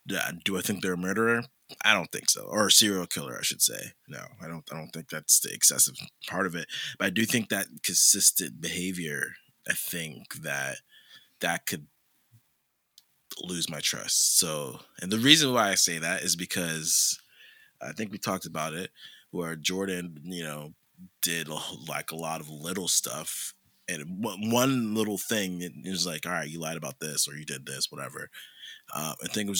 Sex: male